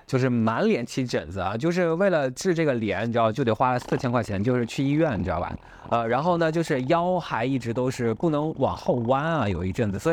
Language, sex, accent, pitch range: Chinese, male, native, 120-180 Hz